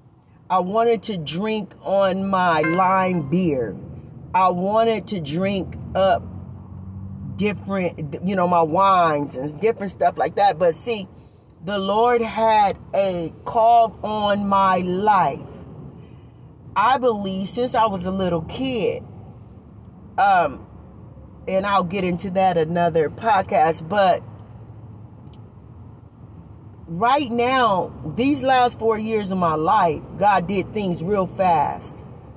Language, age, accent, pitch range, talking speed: English, 40-59, American, 165-220 Hz, 120 wpm